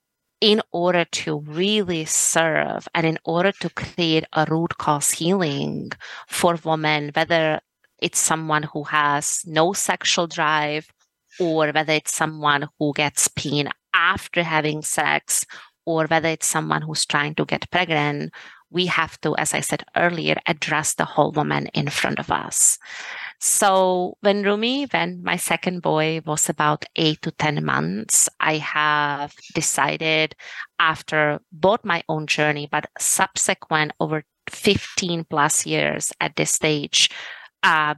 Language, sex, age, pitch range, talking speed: English, female, 30-49, 150-175 Hz, 140 wpm